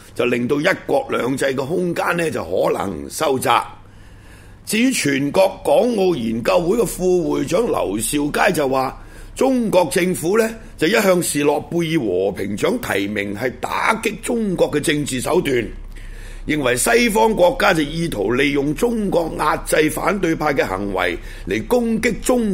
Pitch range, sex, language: 110-180 Hz, male, Chinese